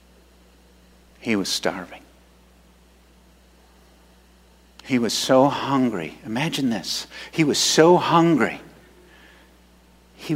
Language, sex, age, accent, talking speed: English, male, 50-69, American, 80 wpm